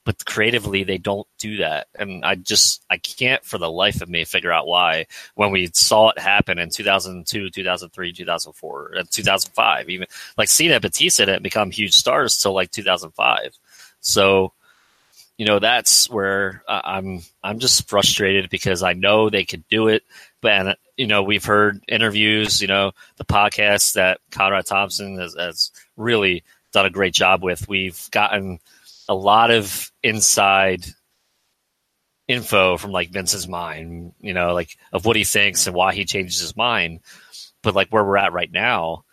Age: 30-49